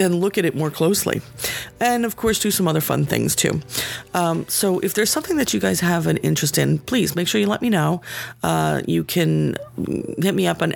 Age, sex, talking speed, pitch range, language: 40-59, female, 230 wpm, 120-175 Hz, English